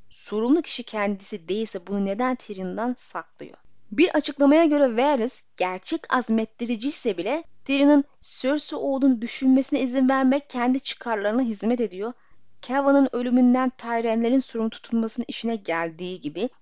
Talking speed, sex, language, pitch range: 120 wpm, female, Turkish, 215-265 Hz